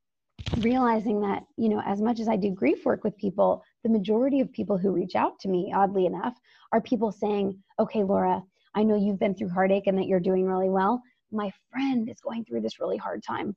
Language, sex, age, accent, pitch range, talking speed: English, female, 20-39, American, 190-230 Hz, 220 wpm